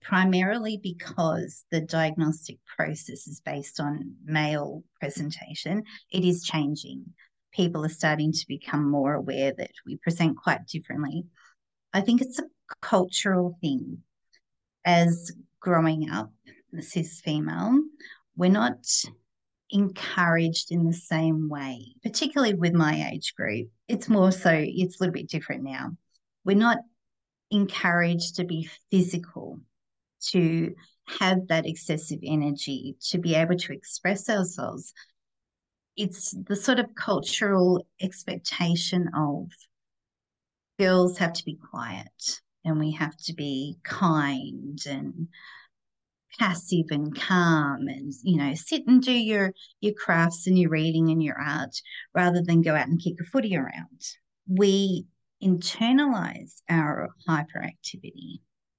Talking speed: 125 wpm